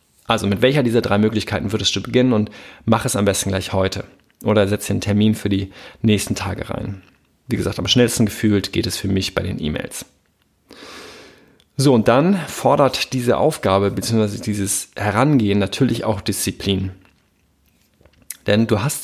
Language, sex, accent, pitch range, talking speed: German, male, German, 100-120 Hz, 165 wpm